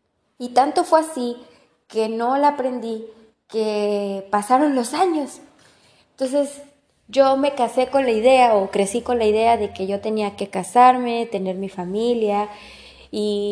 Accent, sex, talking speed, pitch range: Mexican, female, 150 wpm, 200-245 Hz